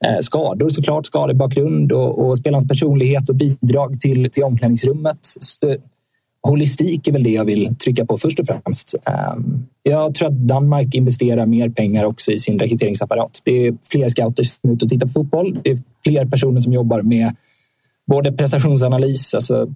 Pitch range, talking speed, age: 125-140 Hz, 175 wpm, 20-39